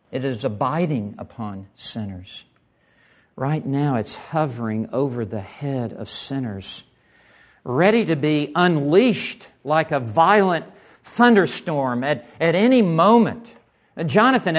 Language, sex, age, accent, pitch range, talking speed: English, male, 50-69, American, 155-220 Hz, 110 wpm